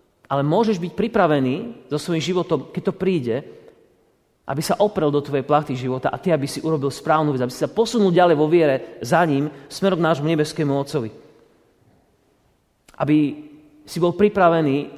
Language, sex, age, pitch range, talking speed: Slovak, male, 30-49, 130-165 Hz, 170 wpm